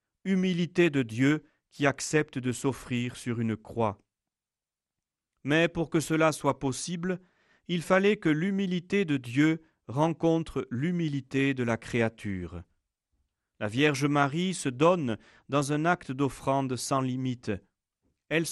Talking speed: 125 wpm